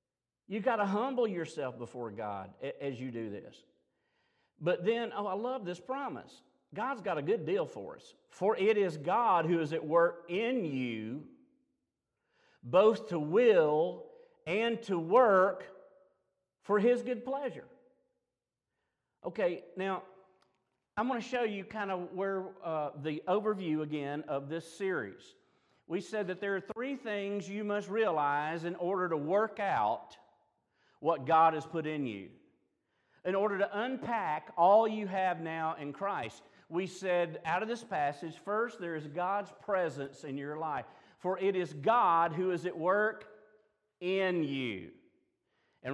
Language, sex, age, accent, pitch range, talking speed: English, male, 50-69, American, 155-215 Hz, 155 wpm